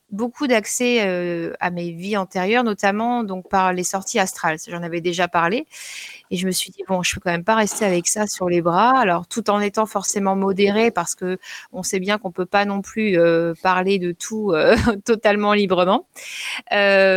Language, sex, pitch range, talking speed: French, female, 190-235 Hz, 205 wpm